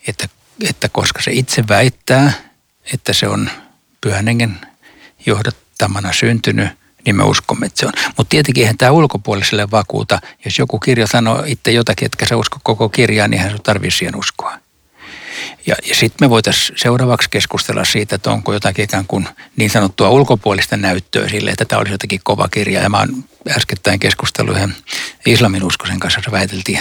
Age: 60-79